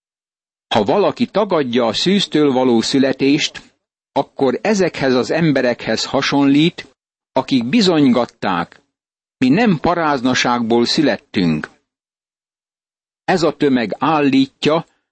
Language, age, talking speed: Hungarian, 60-79, 85 wpm